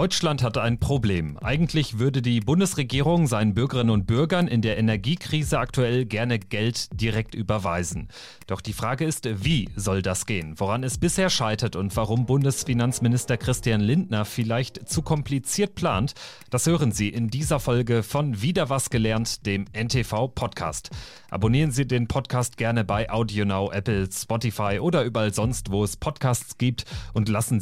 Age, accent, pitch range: 40-59, German, 105-140 Hz